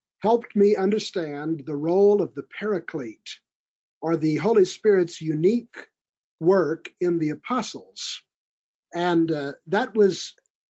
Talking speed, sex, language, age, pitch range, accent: 120 wpm, male, English, 50-69, 160-210 Hz, American